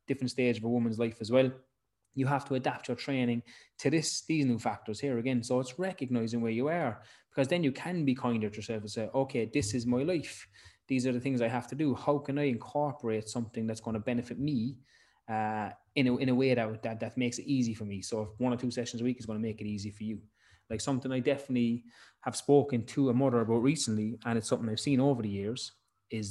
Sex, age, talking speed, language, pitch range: male, 20-39, 250 wpm, English, 110-130 Hz